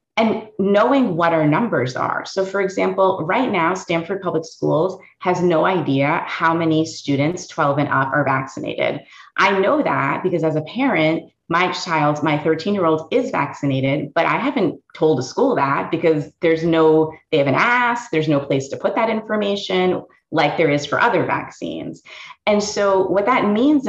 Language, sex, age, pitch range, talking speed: English, female, 30-49, 150-205 Hz, 175 wpm